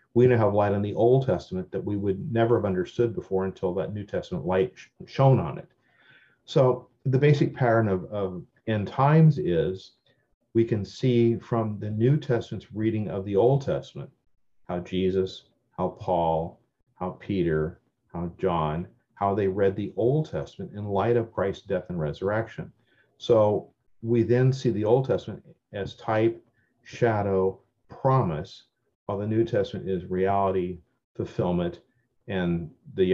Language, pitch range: English, 95-120 Hz